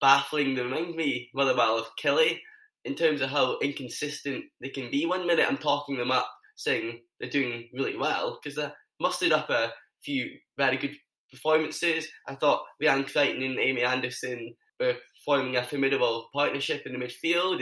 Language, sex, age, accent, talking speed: English, male, 10-29, British, 175 wpm